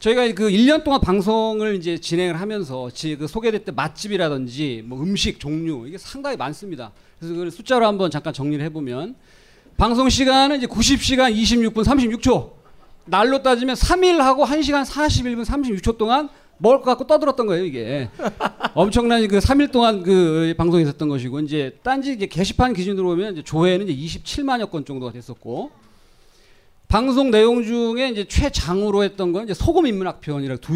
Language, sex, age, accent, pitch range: Korean, male, 40-59, native, 150-235 Hz